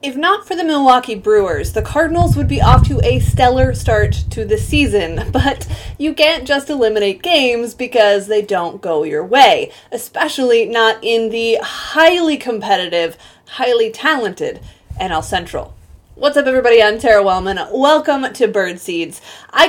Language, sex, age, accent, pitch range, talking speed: English, female, 20-39, American, 225-310 Hz, 155 wpm